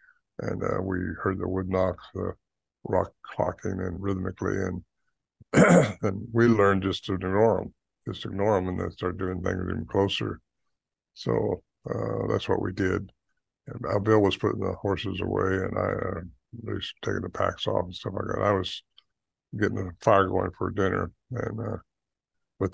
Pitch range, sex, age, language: 90-105 Hz, male, 60-79, English